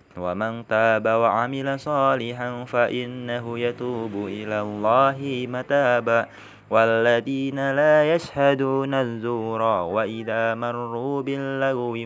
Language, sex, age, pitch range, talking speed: Indonesian, male, 20-39, 105-135 Hz, 80 wpm